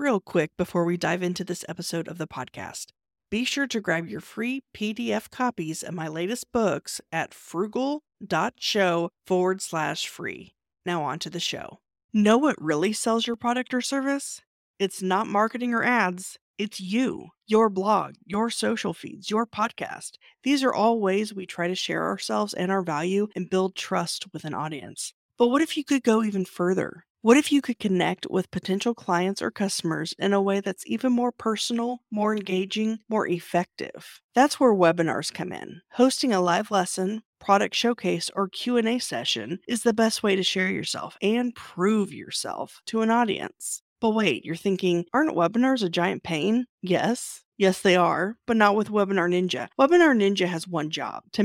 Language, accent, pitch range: English, American, 180-230 Hz